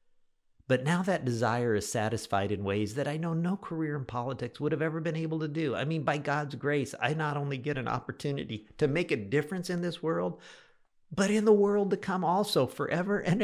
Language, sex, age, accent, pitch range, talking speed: English, male, 50-69, American, 105-155 Hz, 220 wpm